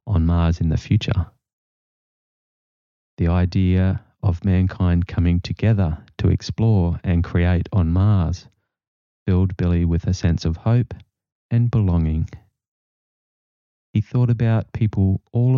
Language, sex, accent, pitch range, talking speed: English, male, Australian, 90-110 Hz, 120 wpm